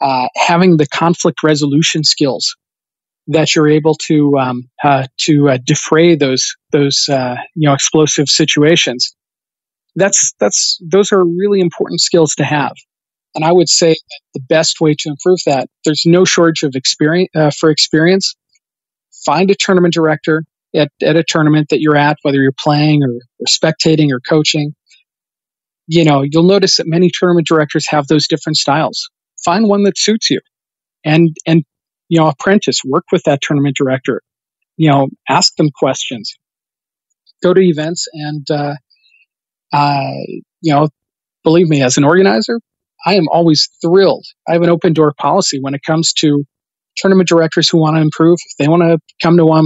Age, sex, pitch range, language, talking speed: 40-59, male, 145-170 Hz, English, 170 wpm